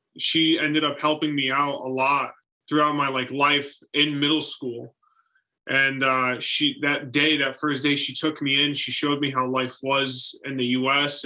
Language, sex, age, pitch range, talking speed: English, male, 20-39, 130-150 Hz, 190 wpm